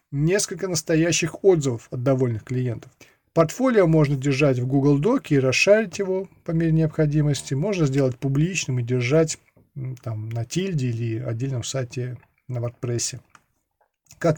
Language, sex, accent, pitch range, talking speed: Russian, male, native, 130-170 Hz, 135 wpm